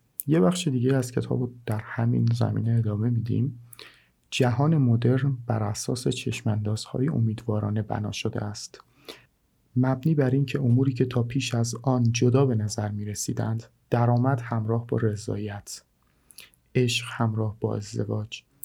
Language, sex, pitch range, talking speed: Persian, male, 110-125 Hz, 130 wpm